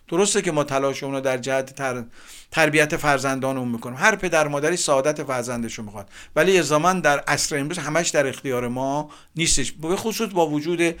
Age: 50-69